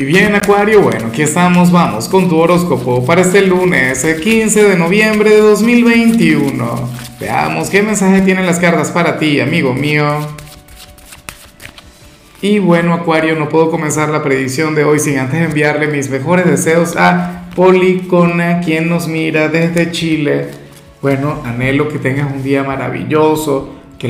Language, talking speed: Spanish, 145 wpm